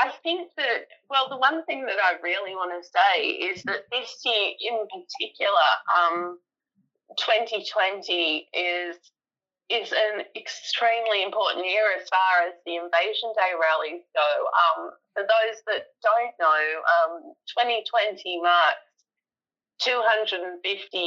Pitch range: 165-225 Hz